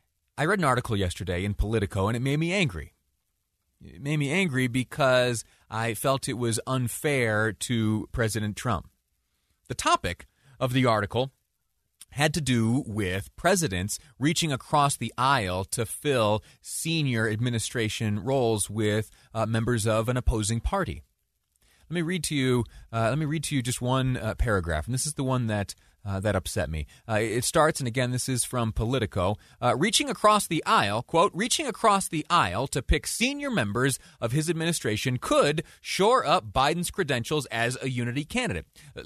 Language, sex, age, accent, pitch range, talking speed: English, male, 30-49, American, 105-140 Hz, 170 wpm